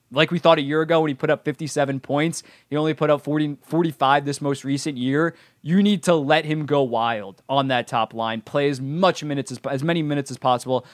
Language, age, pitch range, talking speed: English, 20-39, 130-155 Hz, 235 wpm